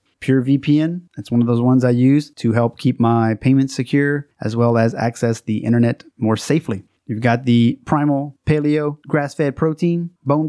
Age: 20-39